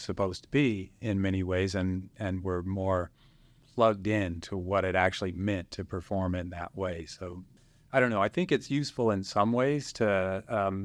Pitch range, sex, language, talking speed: 95-115 Hz, male, English, 195 wpm